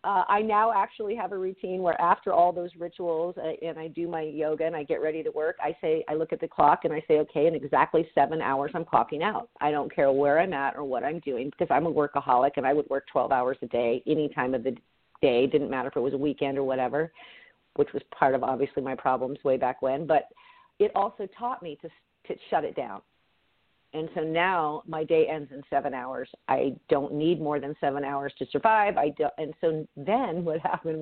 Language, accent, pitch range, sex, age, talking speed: English, American, 145-180 Hz, female, 50-69, 235 wpm